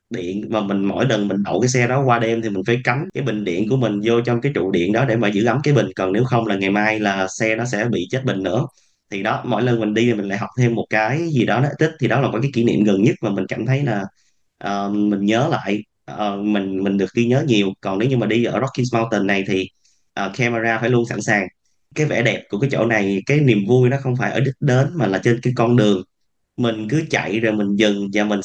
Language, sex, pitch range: Vietnamese, male, 105-130 Hz